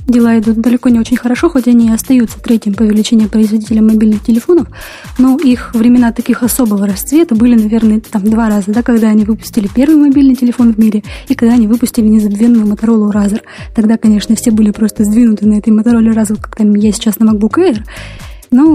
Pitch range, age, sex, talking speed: 220-250 Hz, 20-39, female, 190 wpm